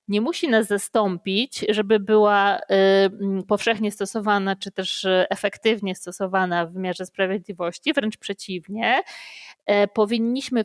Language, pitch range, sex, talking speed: Polish, 185-225 Hz, female, 100 wpm